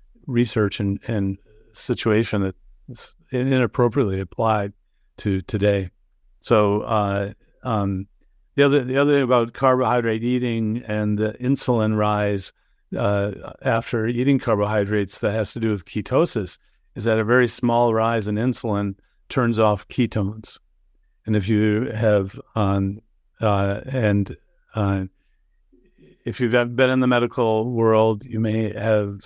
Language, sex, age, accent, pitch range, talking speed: English, male, 50-69, American, 100-115 Hz, 130 wpm